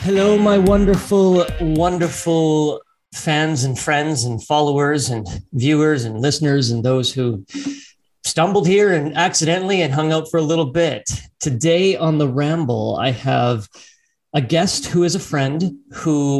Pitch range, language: 120-160 Hz, English